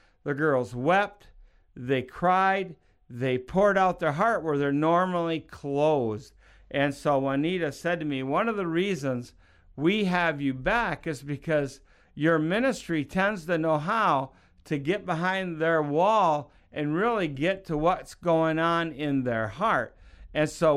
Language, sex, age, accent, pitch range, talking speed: English, male, 50-69, American, 145-190 Hz, 155 wpm